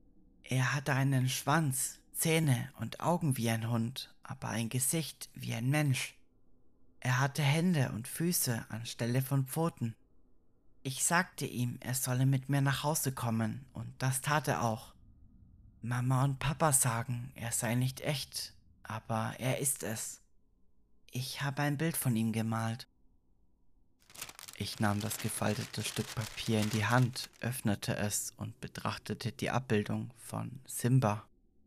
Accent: German